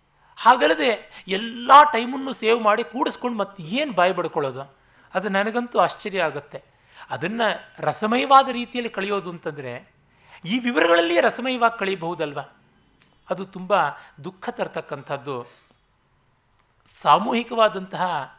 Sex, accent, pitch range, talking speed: male, native, 140-210 Hz, 90 wpm